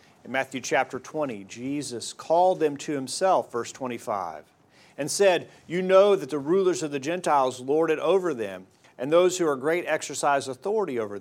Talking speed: 175 wpm